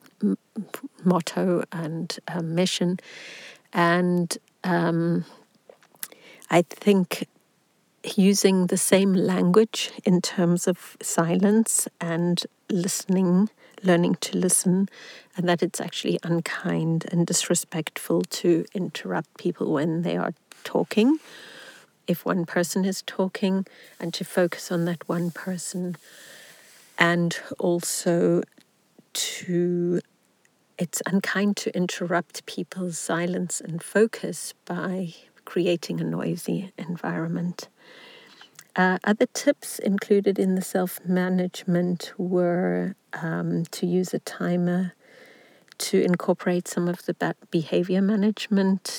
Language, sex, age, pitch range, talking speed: English, female, 50-69, 170-195 Hz, 105 wpm